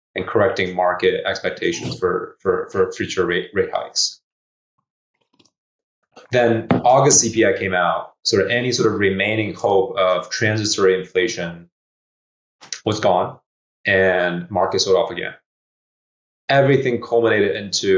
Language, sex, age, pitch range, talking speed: English, male, 20-39, 95-145 Hz, 120 wpm